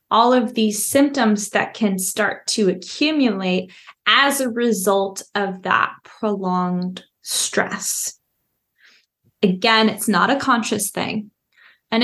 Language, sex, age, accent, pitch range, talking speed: English, female, 20-39, American, 195-230 Hz, 115 wpm